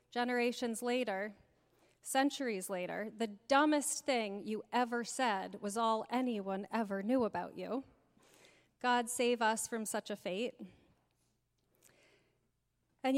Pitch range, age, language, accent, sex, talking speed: 210-270 Hz, 30-49, English, American, female, 115 wpm